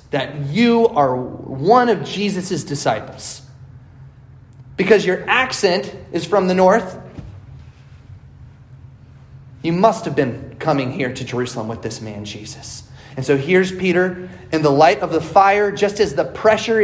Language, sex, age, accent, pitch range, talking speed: English, male, 30-49, American, 130-200 Hz, 145 wpm